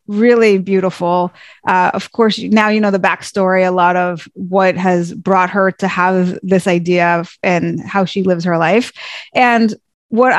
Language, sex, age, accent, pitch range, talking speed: English, female, 30-49, American, 195-245 Hz, 170 wpm